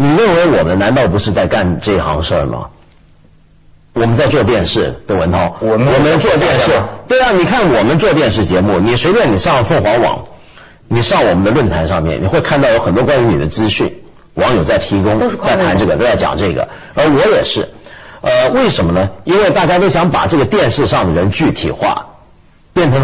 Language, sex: Chinese, male